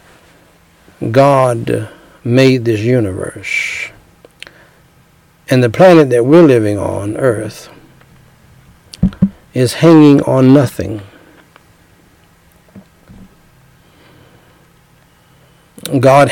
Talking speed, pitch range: 65 wpm, 115-150 Hz